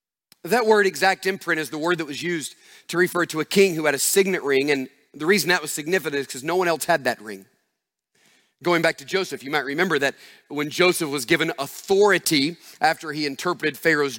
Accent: American